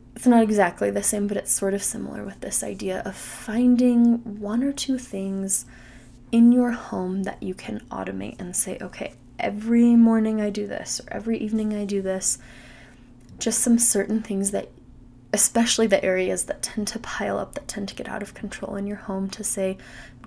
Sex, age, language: female, 20-39, English